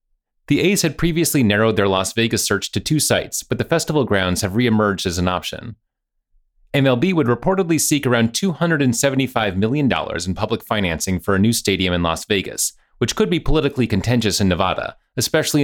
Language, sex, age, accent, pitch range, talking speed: English, male, 30-49, American, 95-130 Hz, 175 wpm